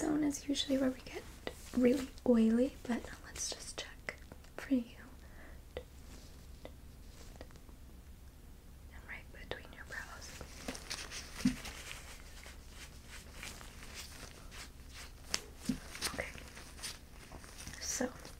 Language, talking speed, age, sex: English, 70 wpm, 20-39, female